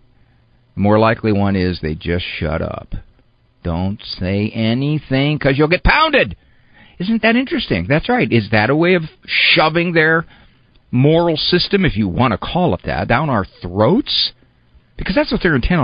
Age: 50-69